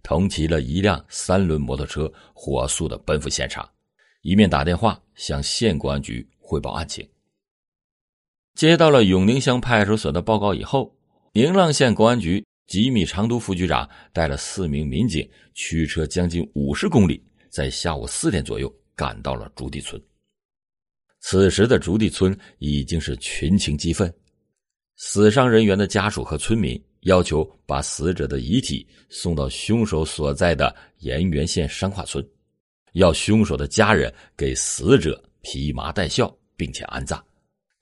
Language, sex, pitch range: Chinese, male, 75-105 Hz